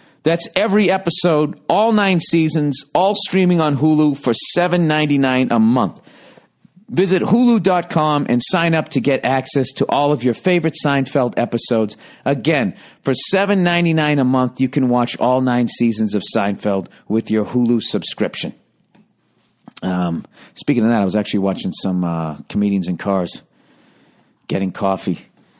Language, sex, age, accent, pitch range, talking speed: English, male, 50-69, American, 95-145 Hz, 145 wpm